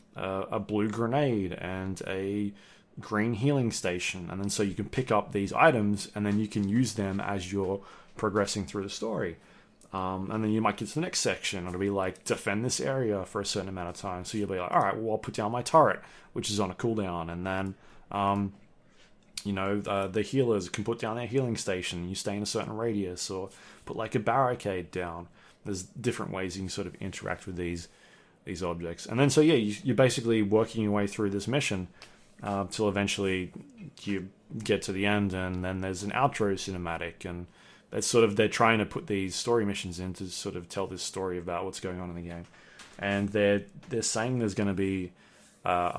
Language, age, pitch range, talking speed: English, 20-39, 95-110 Hz, 220 wpm